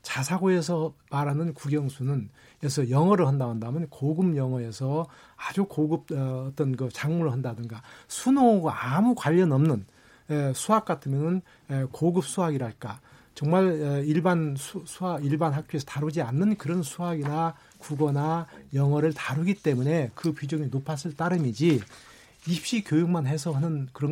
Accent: native